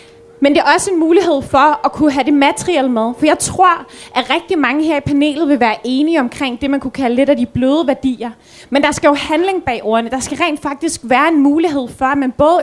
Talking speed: 250 wpm